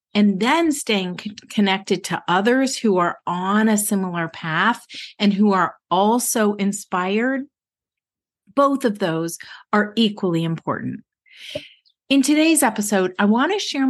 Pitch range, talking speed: 185-270 Hz, 130 wpm